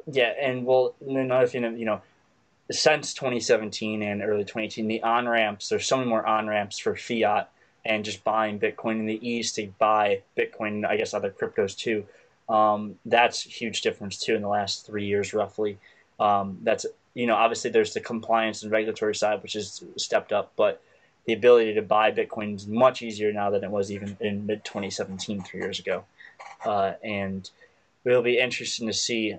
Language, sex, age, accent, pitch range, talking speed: English, male, 20-39, American, 105-130 Hz, 185 wpm